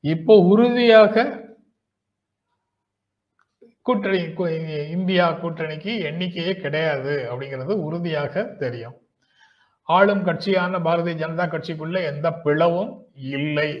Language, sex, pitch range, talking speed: Tamil, male, 135-180 Hz, 80 wpm